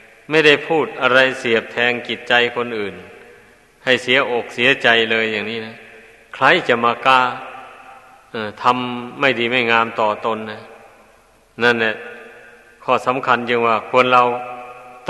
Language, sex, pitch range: Thai, male, 115-135 Hz